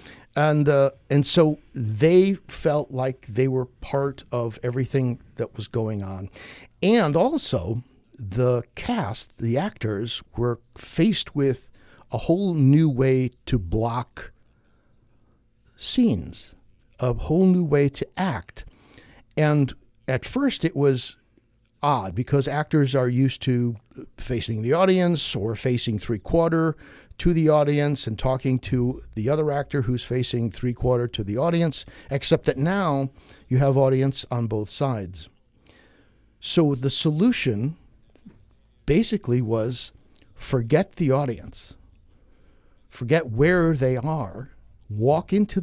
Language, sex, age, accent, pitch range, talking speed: English, male, 60-79, American, 115-145 Hz, 125 wpm